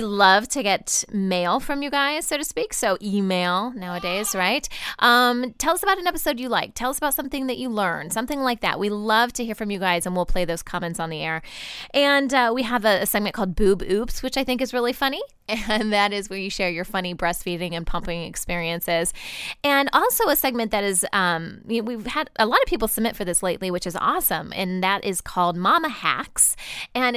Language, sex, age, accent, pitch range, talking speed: English, female, 10-29, American, 185-245 Hz, 225 wpm